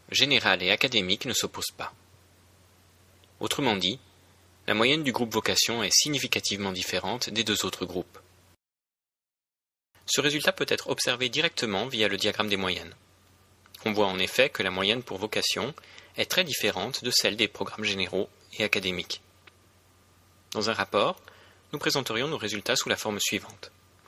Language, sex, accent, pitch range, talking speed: French, male, French, 95-110 Hz, 150 wpm